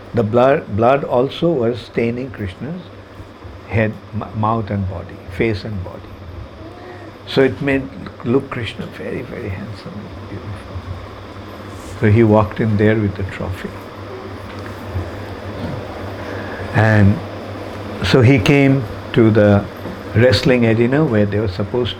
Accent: Indian